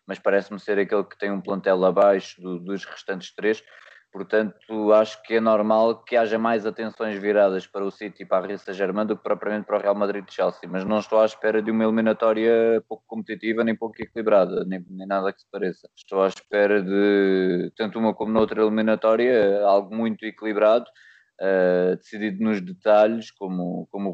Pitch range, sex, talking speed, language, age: 100-110 Hz, male, 190 wpm, Portuguese, 20-39